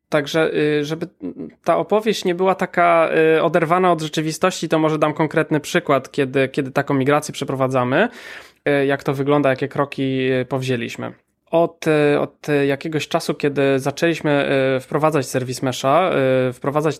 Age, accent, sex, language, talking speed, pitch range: 20-39, native, male, Polish, 125 wpm, 130-155 Hz